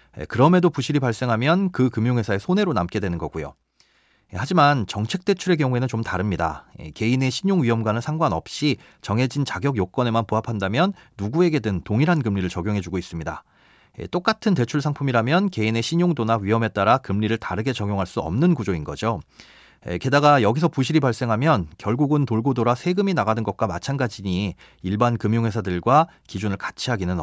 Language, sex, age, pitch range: Korean, male, 30-49, 105-155 Hz